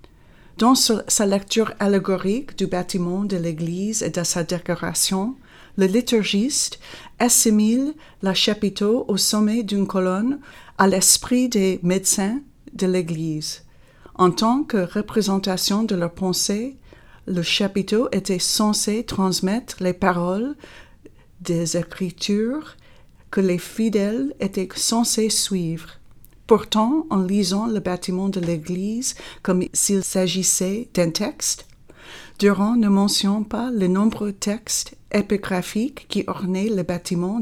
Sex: female